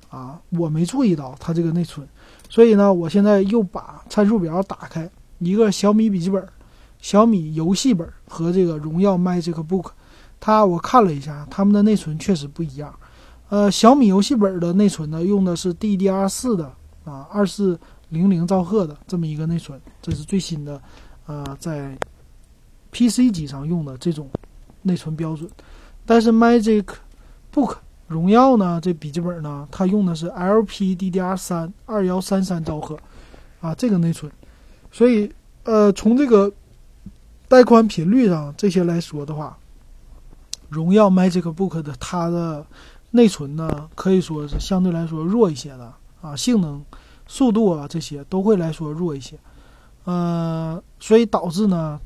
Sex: male